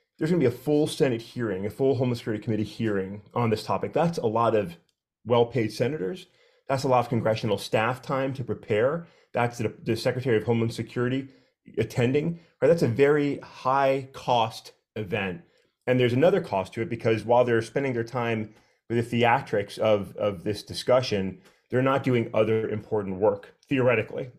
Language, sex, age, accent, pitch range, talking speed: English, male, 30-49, American, 110-145 Hz, 180 wpm